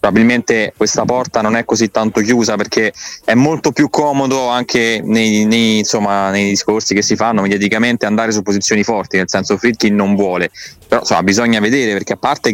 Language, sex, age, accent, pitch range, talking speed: Italian, male, 20-39, native, 100-120 Hz, 170 wpm